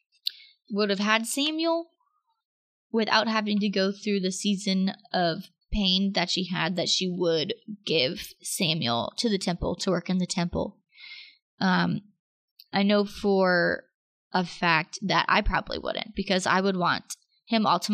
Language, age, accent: English, 20-39, American